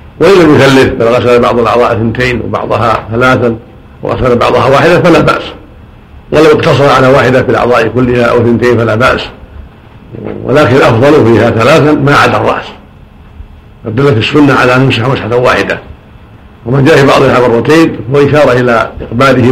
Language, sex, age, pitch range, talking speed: Arabic, male, 50-69, 115-135 Hz, 140 wpm